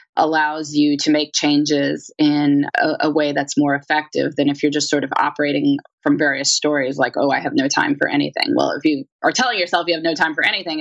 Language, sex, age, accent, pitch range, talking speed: English, female, 20-39, American, 155-260 Hz, 235 wpm